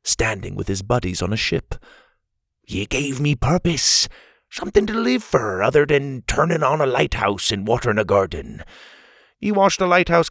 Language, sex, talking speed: English, male, 170 wpm